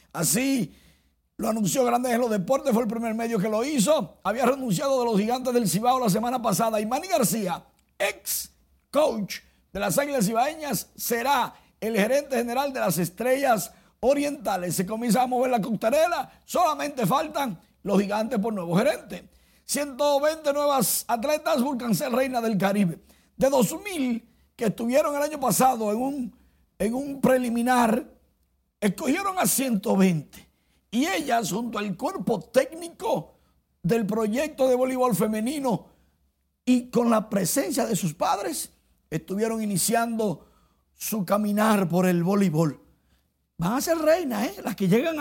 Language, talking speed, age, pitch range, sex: Spanish, 145 wpm, 50-69, 200-270 Hz, male